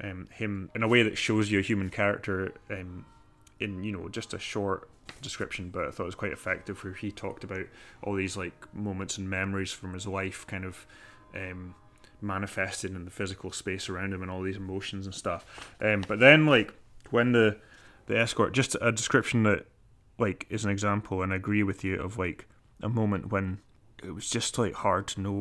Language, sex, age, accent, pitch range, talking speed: English, male, 20-39, British, 95-110 Hz, 210 wpm